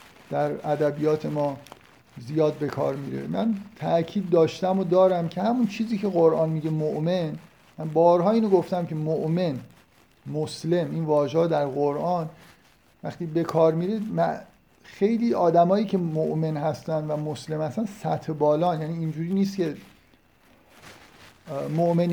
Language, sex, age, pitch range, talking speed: Persian, male, 50-69, 150-180 Hz, 135 wpm